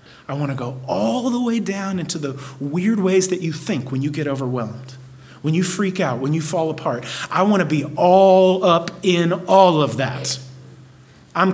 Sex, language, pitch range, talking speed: male, English, 130-155 Hz, 200 wpm